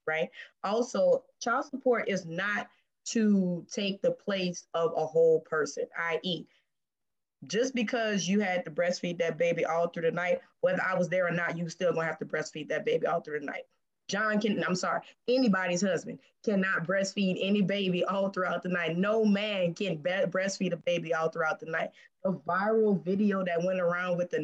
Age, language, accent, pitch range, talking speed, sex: 20-39, English, American, 170-210 Hz, 190 wpm, female